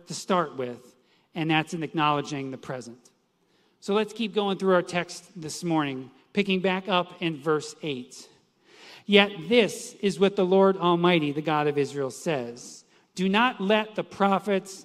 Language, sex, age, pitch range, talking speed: English, male, 40-59, 155-210 Hz, 165 wpm